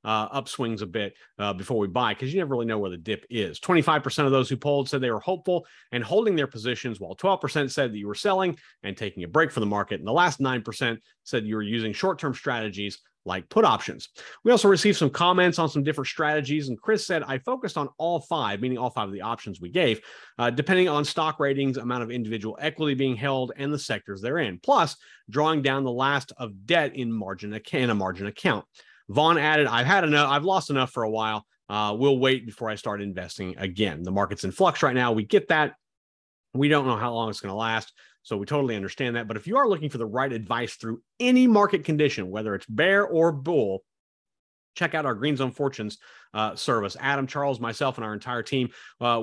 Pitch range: 110-150 Hz